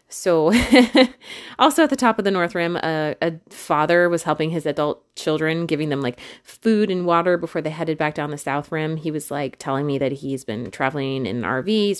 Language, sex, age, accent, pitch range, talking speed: English, female, 30-49, American, 150-205 Hz, 210 wpm